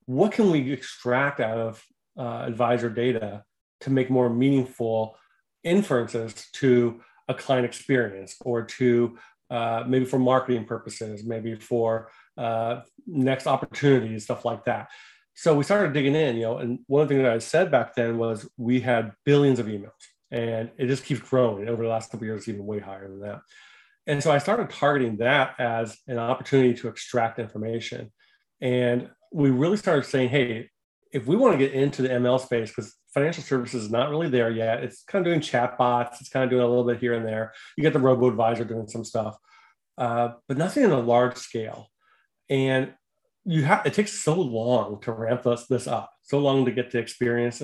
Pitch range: 115-130 Hz